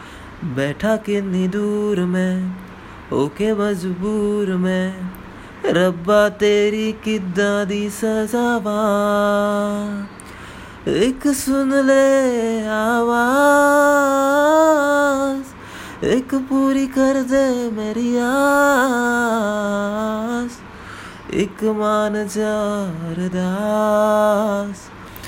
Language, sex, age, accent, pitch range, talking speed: Hindi, male, 20-39, native, 185-220 Hz, 55 wpm